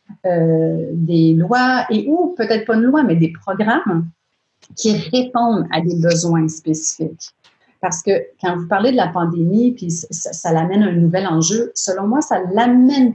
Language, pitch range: French, 165-210 Hz